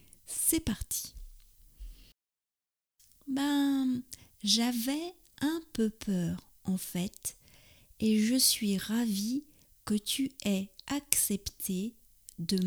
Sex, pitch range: female, 175-230 Hz